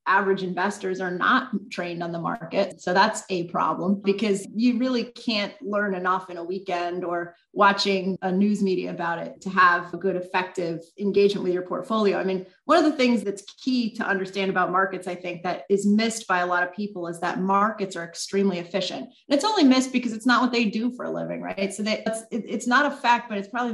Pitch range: 185-230 Hz